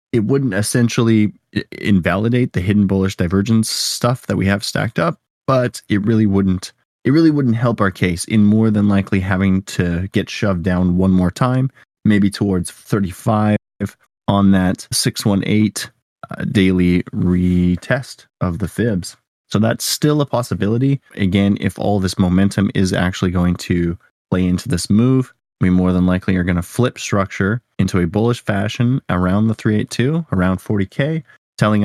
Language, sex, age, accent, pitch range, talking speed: English, male, 20-39, American, 90-110 Hz, 160 wpm